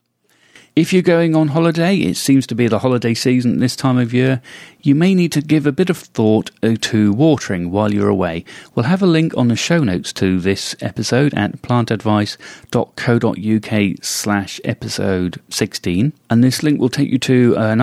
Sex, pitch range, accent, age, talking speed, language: male, 100-135 Hz, British, 40-59, 180 wpm, English